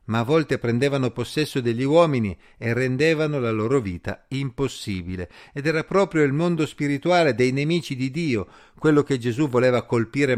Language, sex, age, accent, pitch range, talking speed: Italian, male, 50-69, native, 115-145 Hz, 160 wpm